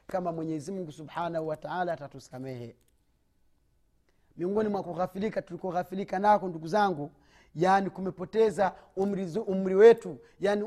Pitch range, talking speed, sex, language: 140-215 Hz, 120 wpm, male, Swahili